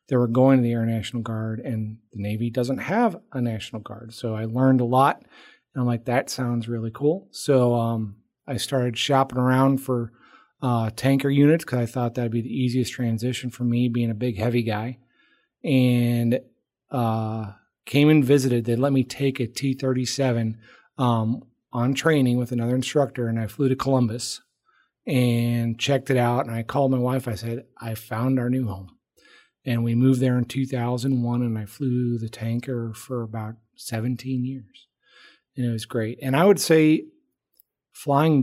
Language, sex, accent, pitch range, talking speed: English, male, American, 115-130 Hz, 180 wpm